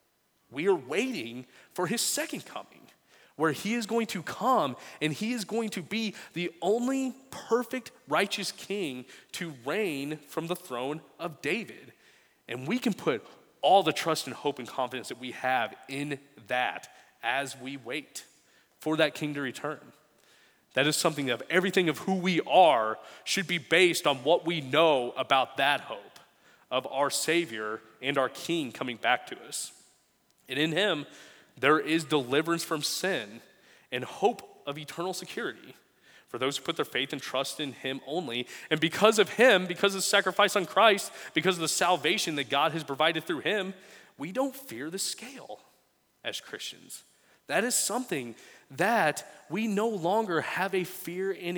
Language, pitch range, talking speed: English, 140-195 Hz, 170 wpm